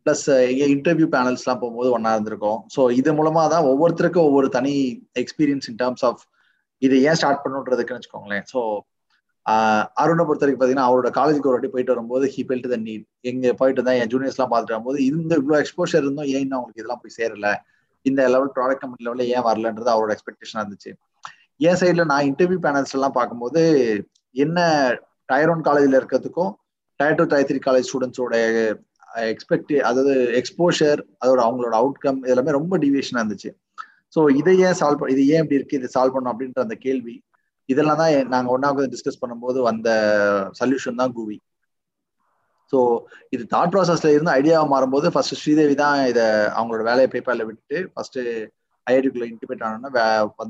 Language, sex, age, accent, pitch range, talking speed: Tamil, male, 20-39, native, 120-140 Hz, 165 wpm